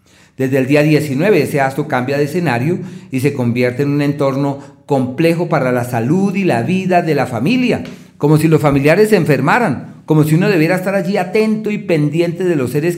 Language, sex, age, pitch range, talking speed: Spanish, male, 40-59, 125-160 Hz, 200 wpm